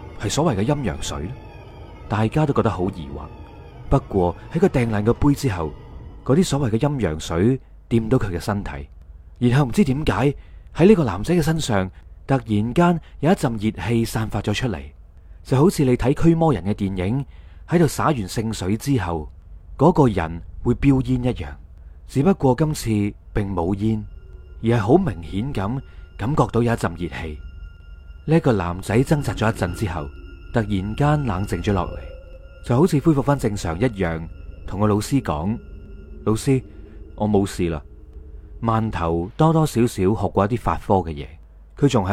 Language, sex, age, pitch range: Chinese, male, 30-49, 85-135 Hz